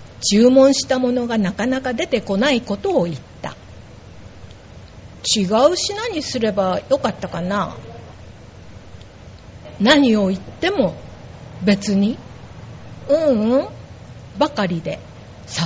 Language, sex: Japanese, female